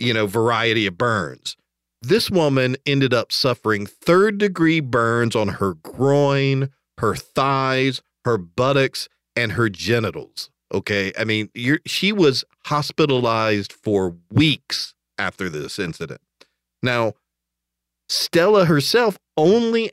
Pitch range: 110-145 Hz